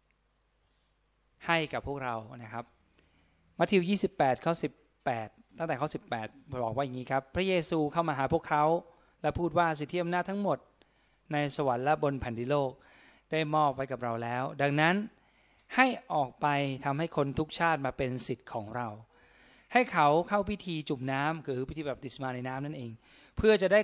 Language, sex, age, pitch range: Thai, male, 20-39, 130-165 Hz